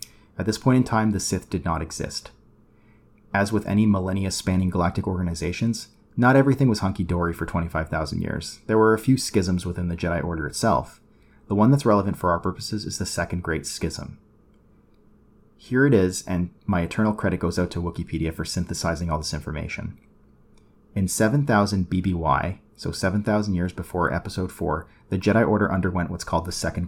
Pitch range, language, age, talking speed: 85-110 Hz, English, 30-49, 175 wpm